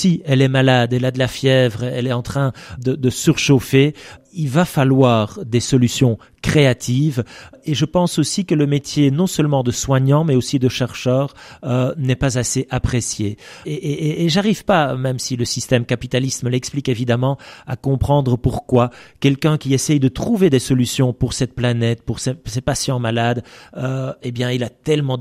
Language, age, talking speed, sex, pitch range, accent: French, 40-59, 190 wpm, male, 120-135 Hz, French